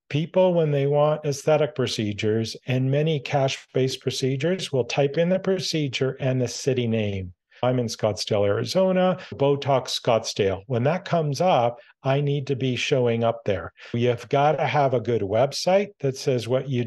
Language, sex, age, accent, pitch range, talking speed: English, male, 50-69, American, 120-145 Hz, 165 wpm